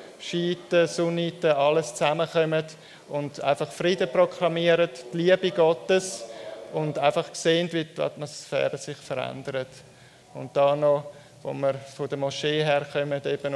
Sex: male